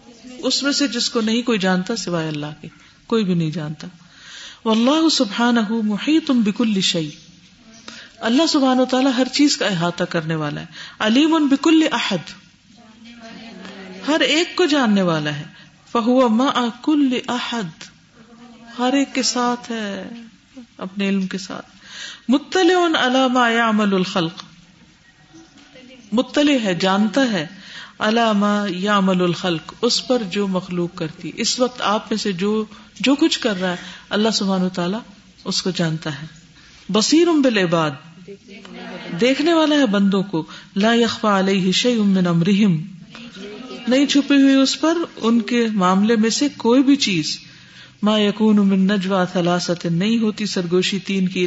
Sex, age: female, 50-69